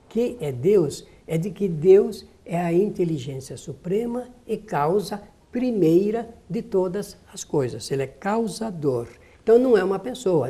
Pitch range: 160-220 Hz